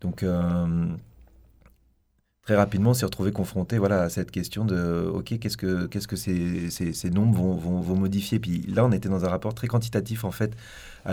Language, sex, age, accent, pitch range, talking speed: French, male, 30-49, French, 90-105 Hz, 215 wpm